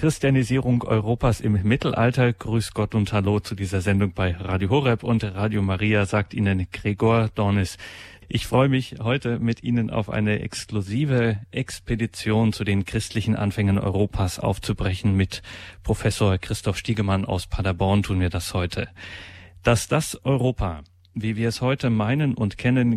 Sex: male